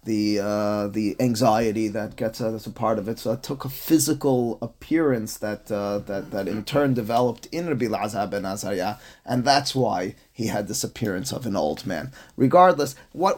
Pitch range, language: 115-140 Hz, English